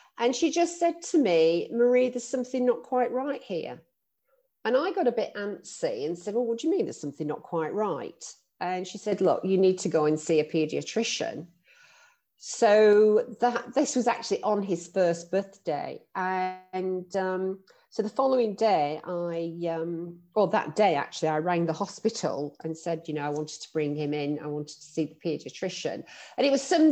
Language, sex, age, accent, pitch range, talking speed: English, female, 40-59, British, 165-235 Hz, 195 wpm